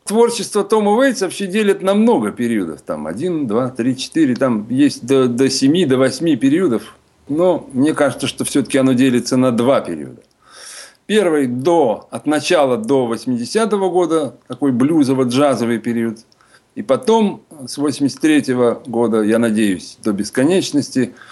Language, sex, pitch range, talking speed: Russian, male, 125-200 Hz, 145 wpm